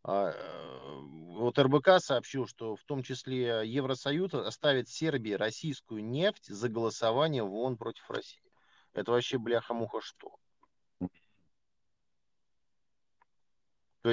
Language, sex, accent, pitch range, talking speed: Russian, male, native, 115-160 Hz, 105 wpm